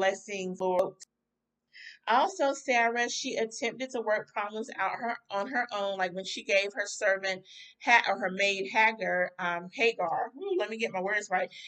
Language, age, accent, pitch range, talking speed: English, 30-49, American, 195-250 Hz, 180 wpm